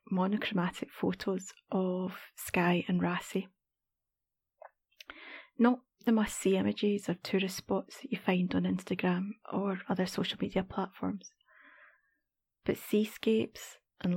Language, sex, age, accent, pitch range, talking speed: English, female, 30-49, British, 185-220 Hz, 110 wpm